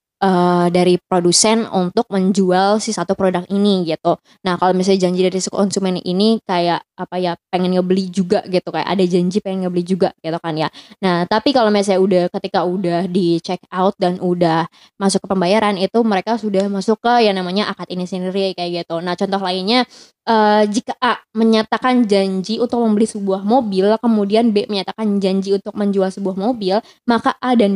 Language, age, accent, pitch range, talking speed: Indonesian, 20-39, native, 180-215 Hz, 180 wpm